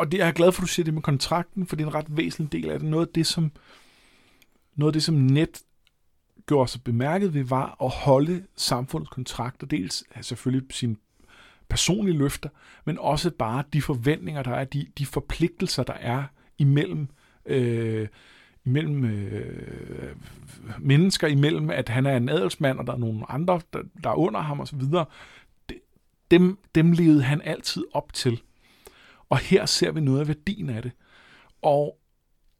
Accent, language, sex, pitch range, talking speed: native, Danish, male, 130-165 Hz, 180 wpm